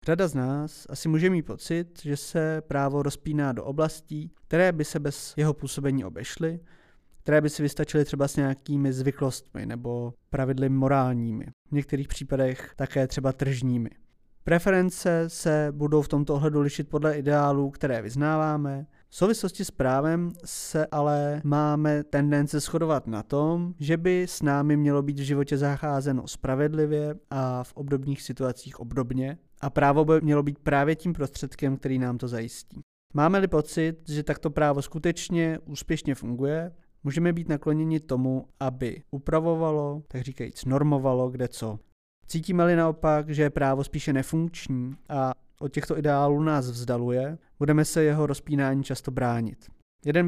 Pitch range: 135-155 Hz